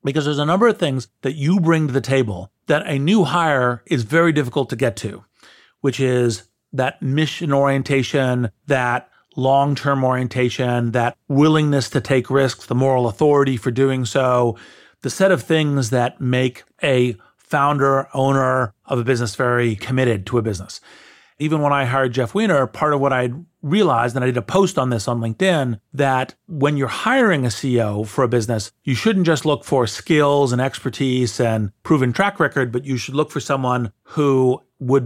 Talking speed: 185 wpm